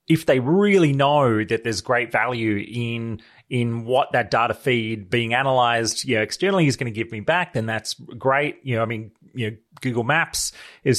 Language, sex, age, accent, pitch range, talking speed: English, male, 30-49, Australian, 120-160 Hz, 200 wpm